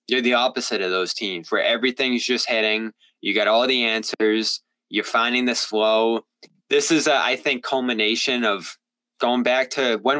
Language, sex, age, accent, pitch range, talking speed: English, male, 20-39, American, 115-145 Hz, 170 wpm